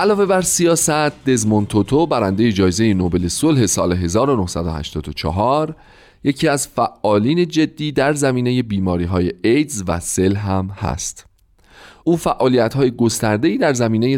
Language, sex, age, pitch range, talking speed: Persian, male, 40-59, 95-135 Hz, 125 wpm